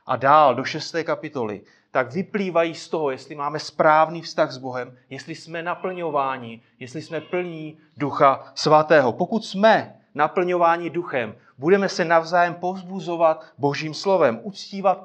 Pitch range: 145-180 Hz